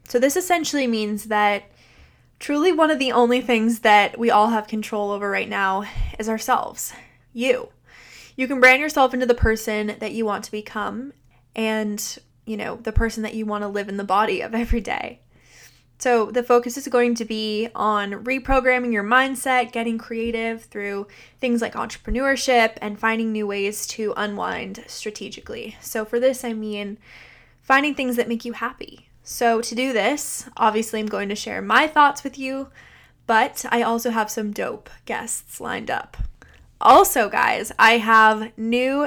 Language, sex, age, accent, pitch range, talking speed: English, female, 20-39, American, 215-255 Hz, 170 wpm